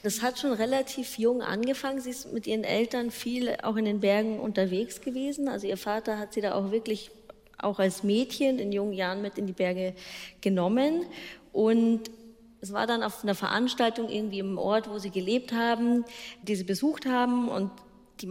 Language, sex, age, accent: German, female, 20-39, German